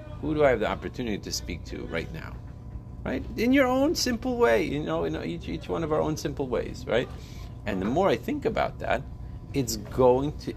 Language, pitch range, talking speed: English, 90-120 Hz, 225 wpm